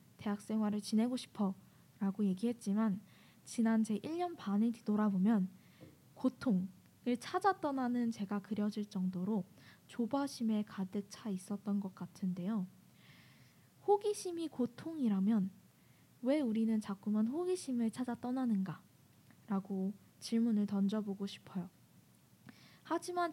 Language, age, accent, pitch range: Korean, 10-29, native, 200-250 Hz